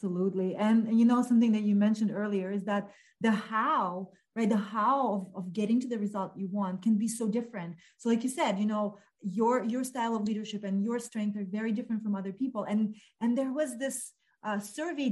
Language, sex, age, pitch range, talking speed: English, female, 30-49, 205-250 Hz, 220 wpm